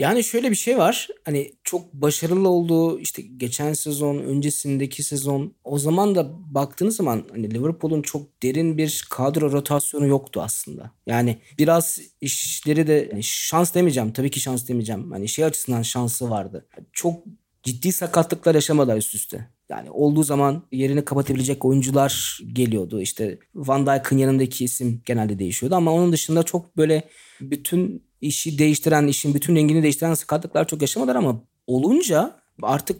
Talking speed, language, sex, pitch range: 150 wpm, Turkish, male, 135-165 Hz